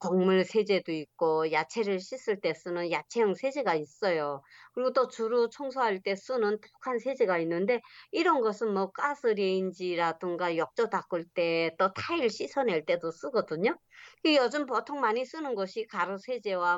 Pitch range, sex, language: 180-265 Hz, male, Korean